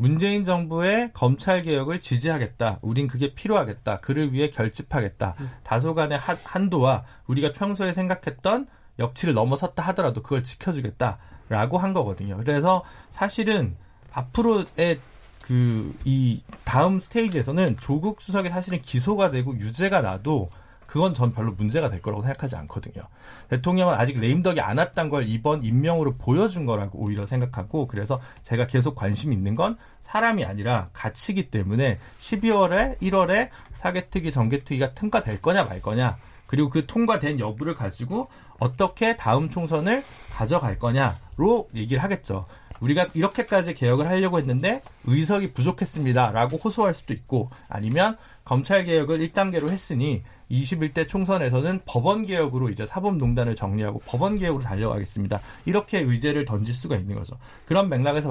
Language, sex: Korean, male